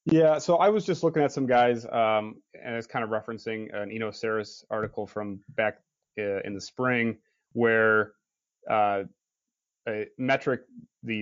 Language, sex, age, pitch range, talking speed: English, male, 30-49, 105-120 Hz, 160 wpm